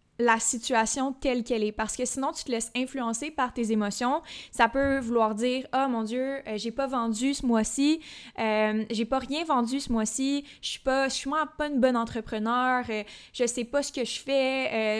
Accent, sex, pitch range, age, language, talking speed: Canadian, female, 225-265 Hz, 20-39, French, 210 wpm